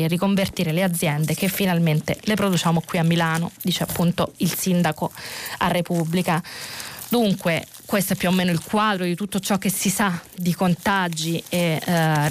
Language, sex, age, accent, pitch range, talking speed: Italian, female, 20-39, native, 165-200 Hz, 170 wpm